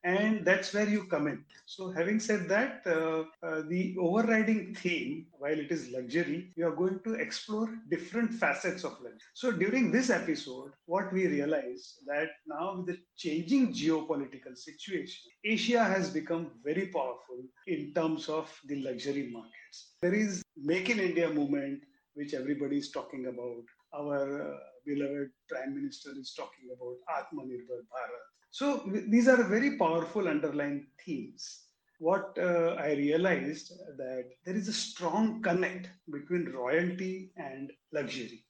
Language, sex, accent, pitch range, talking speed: English, male, Indian, 145-190 Hz, 150 wpm